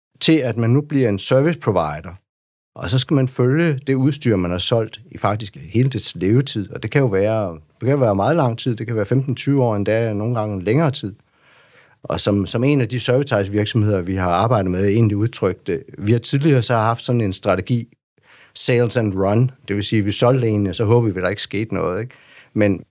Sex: male